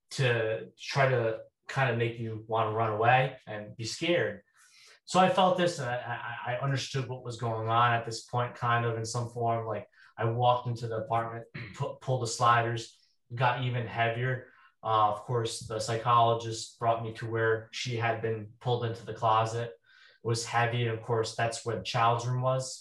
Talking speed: 190 wpm